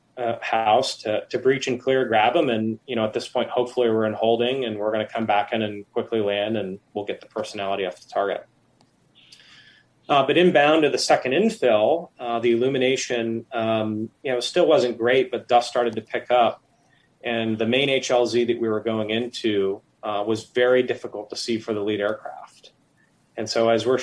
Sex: male